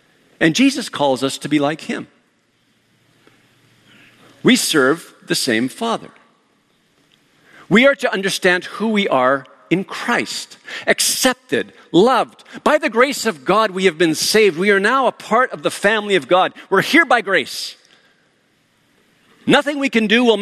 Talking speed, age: 155 wpm, 50-69